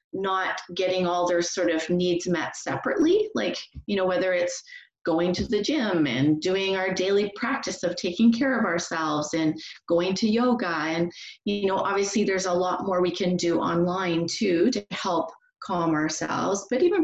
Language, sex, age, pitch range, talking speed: English, female, 30-49, 175-215 Hz, 180 wpm